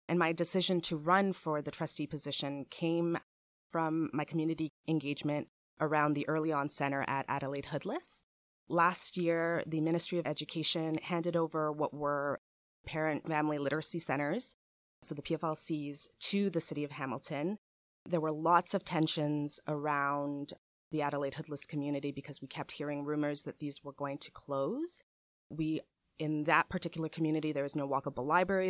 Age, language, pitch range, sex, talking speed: 20-39, English, 145-165 Hz, female, 155 wpm